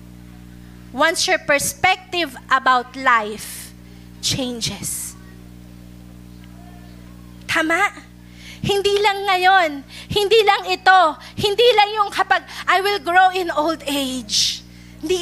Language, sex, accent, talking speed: Filipino, female, native, 95 wpm